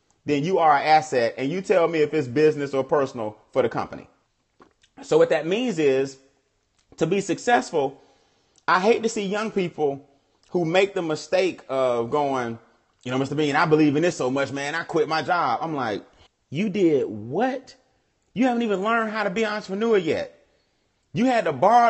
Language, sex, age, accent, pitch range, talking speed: English, male, 30-49, American, 135-205 Hz, 195 wpm